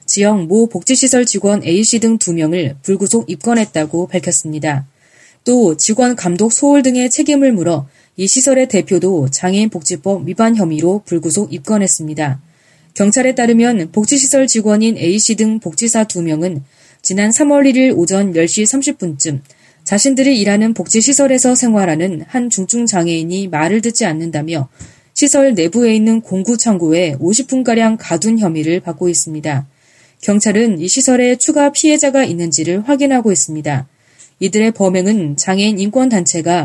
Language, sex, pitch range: Korean, female, 160-235 Hz